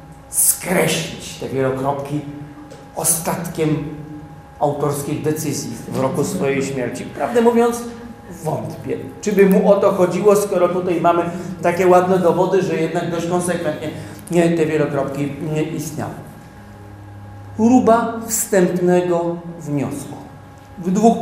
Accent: native